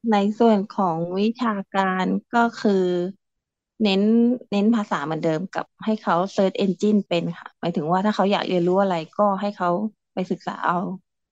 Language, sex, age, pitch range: Thai, female, 20-39, 190-235 Hz